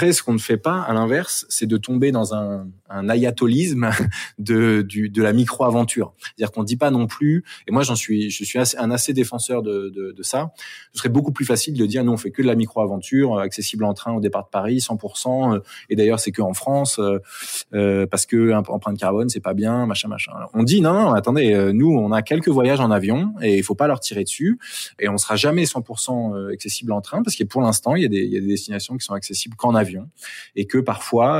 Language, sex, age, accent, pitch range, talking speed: French, male, 20-39, French, 105-125 Hz, 250 wpm